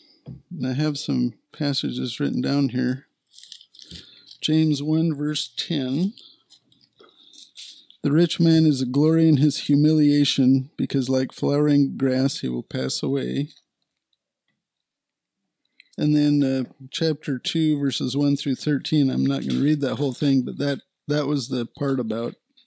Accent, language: American, English